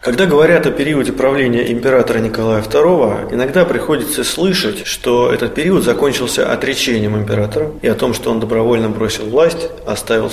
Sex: male